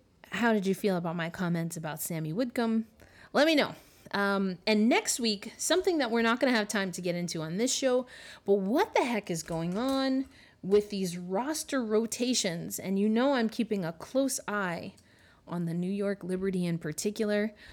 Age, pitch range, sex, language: 30-49, 185-265 Hz, female, English